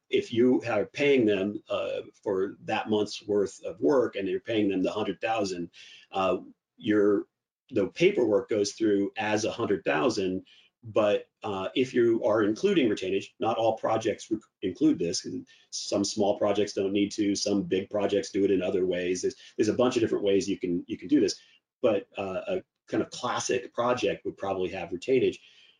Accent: American